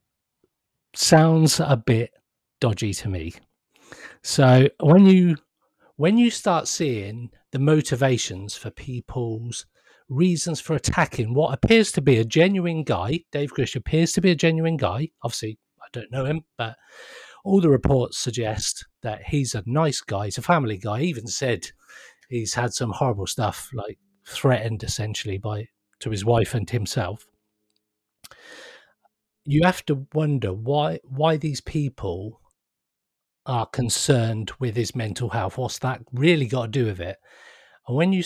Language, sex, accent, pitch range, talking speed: English, male, British, 110-150 Hz, 150 wpm